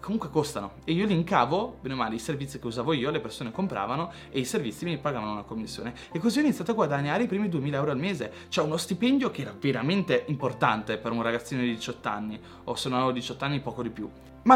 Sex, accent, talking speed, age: male, native, 245 wpm, 20-39